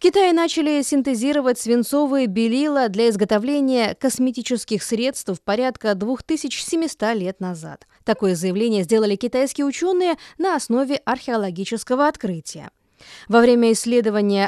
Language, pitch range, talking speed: Russian, 205-285 Hz, 110 wpm